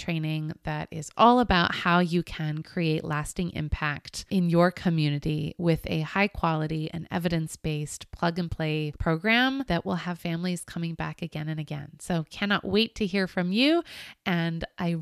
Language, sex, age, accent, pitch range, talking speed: English, female, 20-39, American, 170-220 Hz, 170 wpm